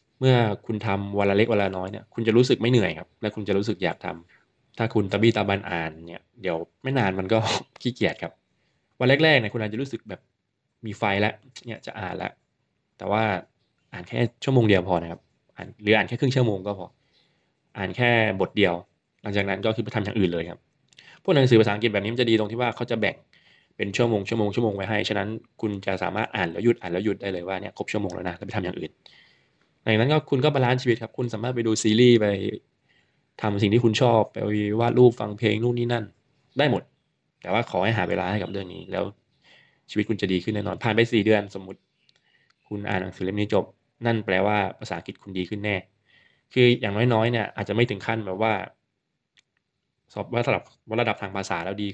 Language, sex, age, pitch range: Thai, male, 20-39, 95-115 Hz